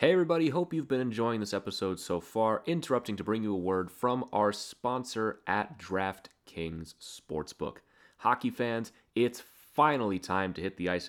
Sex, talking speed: male, 170 wpm